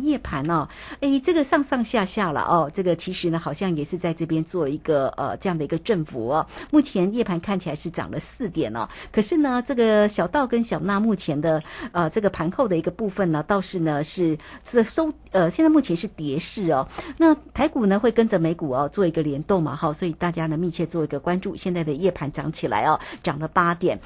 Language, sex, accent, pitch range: Chinese, female, American, 165-230 Hz